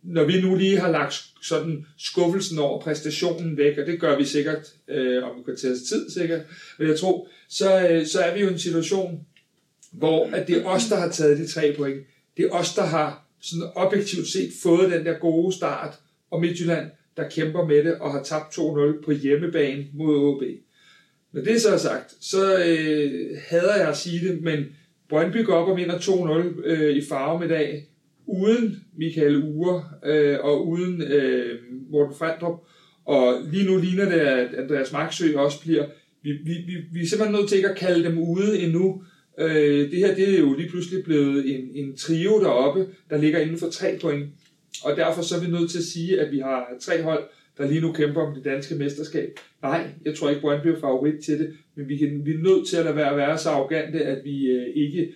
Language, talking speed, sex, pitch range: Danish, 210 wpm, male, 145-175 Hz